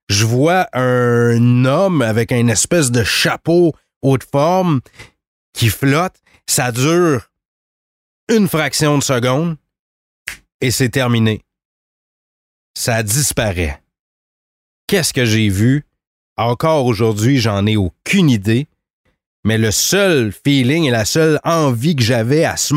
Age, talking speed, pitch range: 30-49, 120 wpm, 115-150 Hz